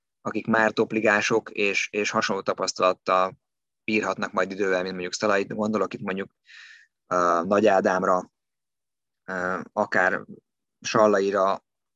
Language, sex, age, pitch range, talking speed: Hungarian, male, 20-39, 95-110 Hz, 110 wpm